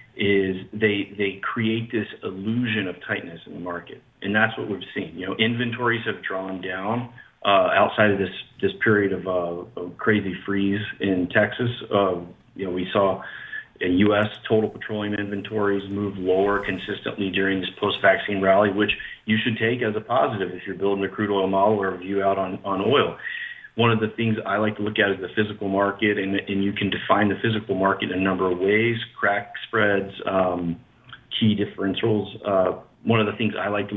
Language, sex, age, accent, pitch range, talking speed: English, male, 40-59, American, 95-110 Hz, 195 wpm